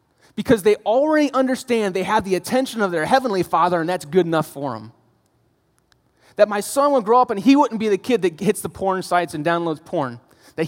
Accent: American